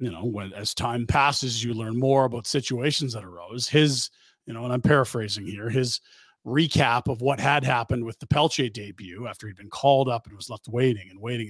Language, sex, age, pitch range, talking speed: English, male, 40-59, 125-165 Hz, 215 wpm